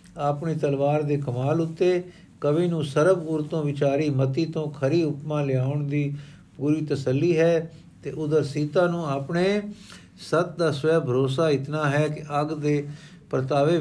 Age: 60-79